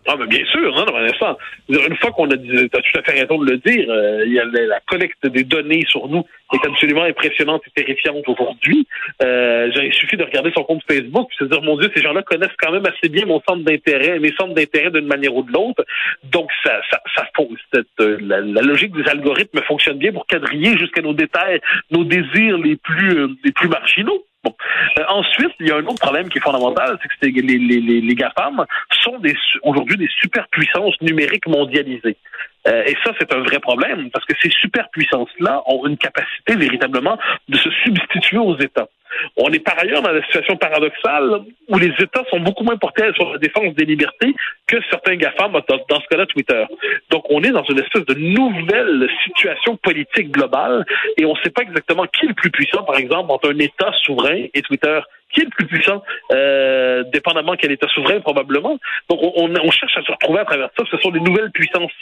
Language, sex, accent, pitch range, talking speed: French, male, French, 145-195 Hz, 220 wpm